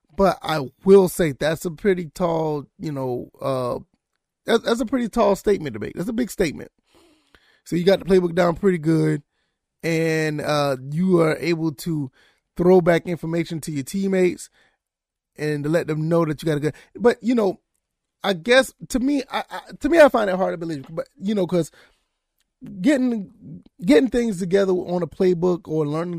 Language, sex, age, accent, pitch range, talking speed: English, male, 30-49, American, 150-195 Hz, 190 wpm